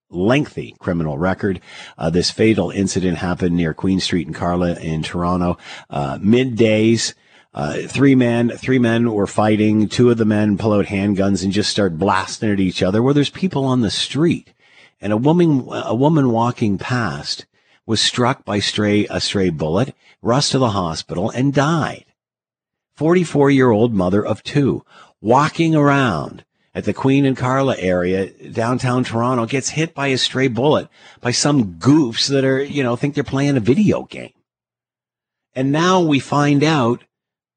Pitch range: 105-145 Hz